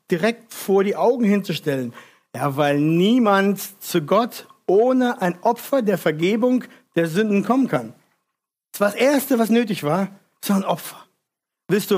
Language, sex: German, male